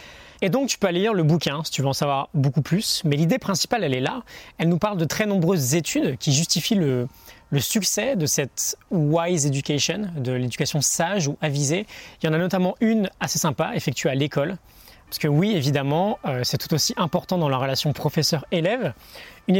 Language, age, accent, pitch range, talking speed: French, 20-39, French, 140-185 Hz, 210 wpm